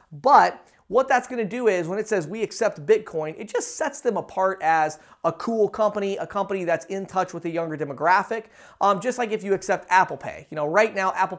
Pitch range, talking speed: 165-205 Hz, 230 wpm